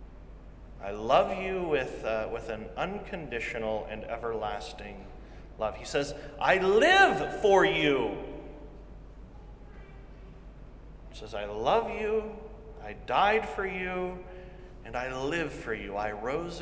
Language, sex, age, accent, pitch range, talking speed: English, male, 30-49, American, 110-150 Hz, 120 wpm